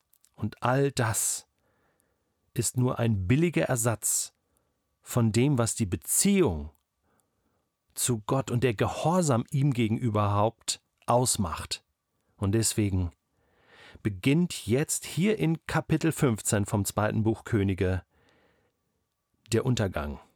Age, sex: 40-59, male